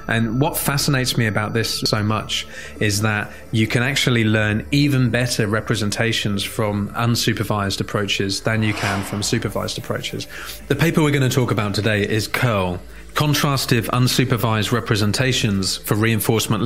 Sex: male